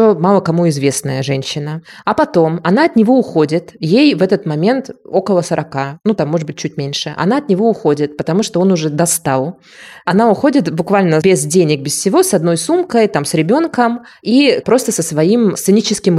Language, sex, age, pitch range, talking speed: Russian, female, 20-39, 155-210 Hz, 180 wpm